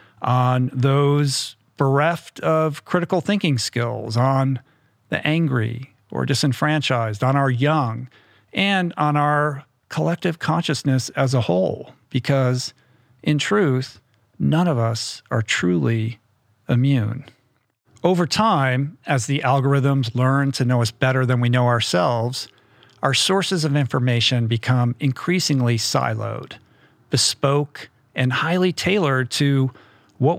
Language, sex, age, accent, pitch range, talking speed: English, male, 50-69, American, 120-145 Hz, 115 wpm